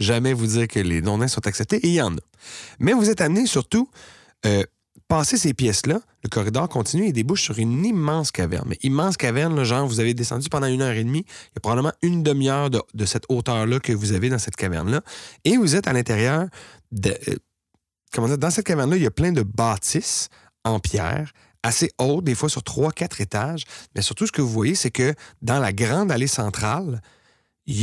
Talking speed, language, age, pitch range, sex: 220 wpm, French, 30-49, 110-150 Hz, male